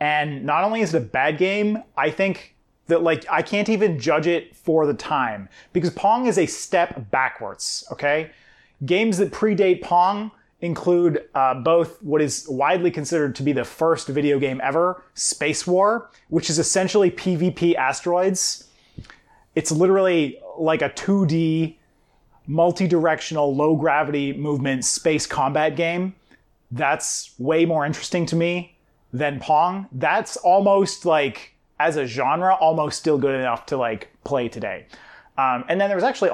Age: 30-49